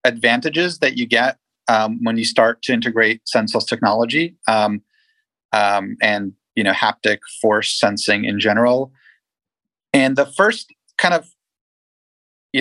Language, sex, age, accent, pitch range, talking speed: English, male, 30-49, American, 105-135 Hz, 135 wpm